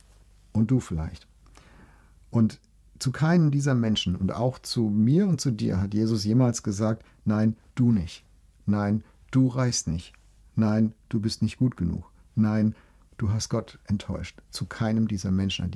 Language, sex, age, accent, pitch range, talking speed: German, male, 50-69, German, 85-110 Hz, 160 wpm